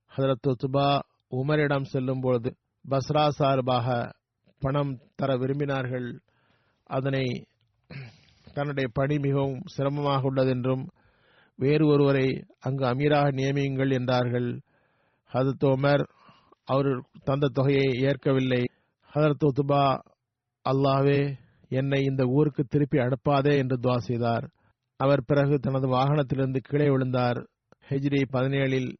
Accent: native